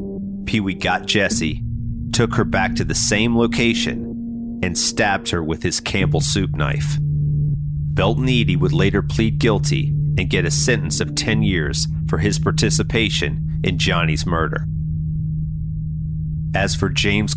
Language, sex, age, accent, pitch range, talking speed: English, male, 40-59, American, 95-145 Hz, 140 wpm